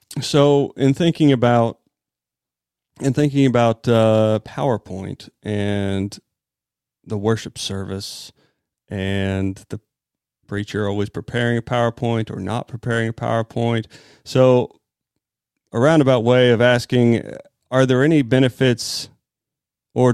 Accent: American